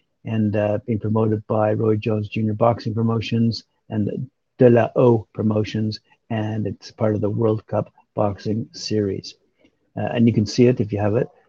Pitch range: 105-125 Hz